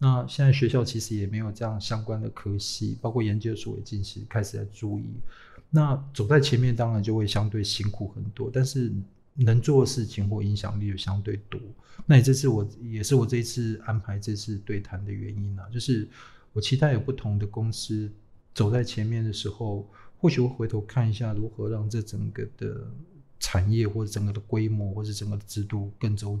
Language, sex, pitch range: Chinese, male, 105-125 Hz